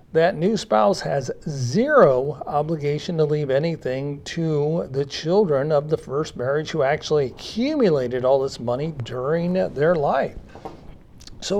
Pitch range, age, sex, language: 135-180 Hz, 40-59, male, English